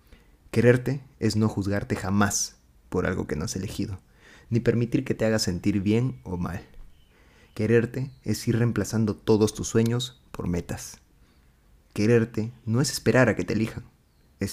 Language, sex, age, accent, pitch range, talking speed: Spanish, male, 30-49, Mexican, 90-115 Hz, 155 wpm